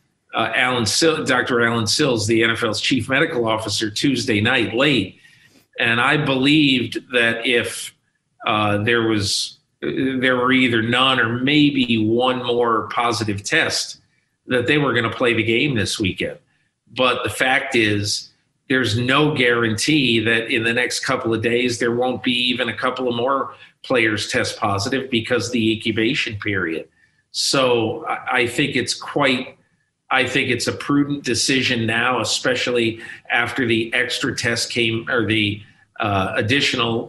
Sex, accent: male, American